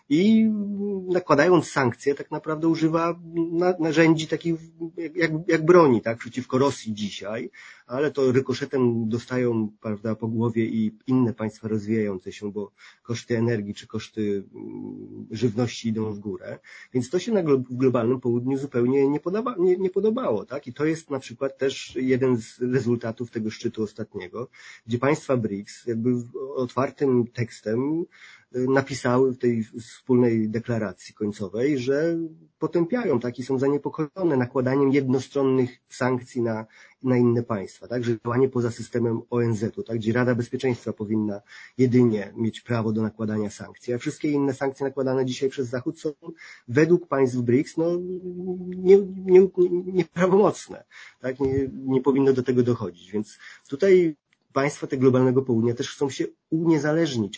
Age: 30-49